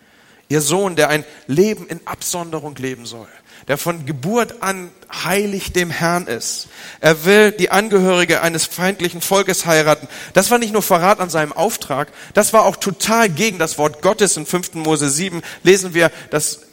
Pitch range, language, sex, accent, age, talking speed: 130-175 Hz, German, male, German, 40-59, 170 wpm